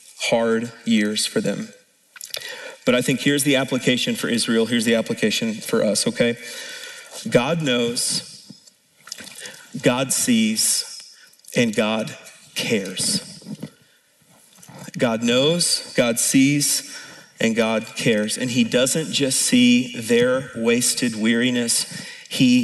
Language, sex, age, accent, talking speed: English, male, 40-59, American, 110 wpm